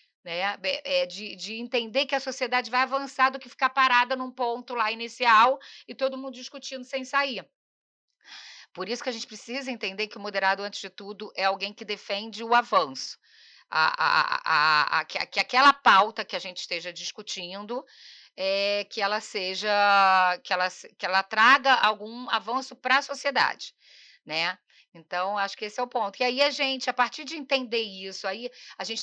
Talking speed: 180 wpm